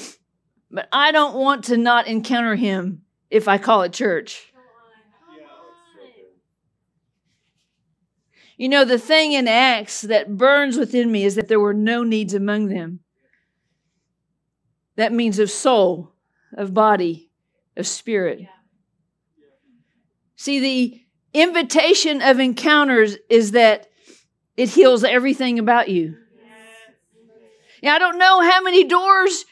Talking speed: 120 wpm